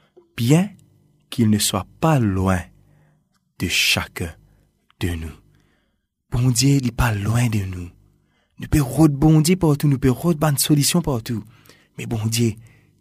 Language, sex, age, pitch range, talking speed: French, male, 30-49, 95-125 Hz, 150 wpm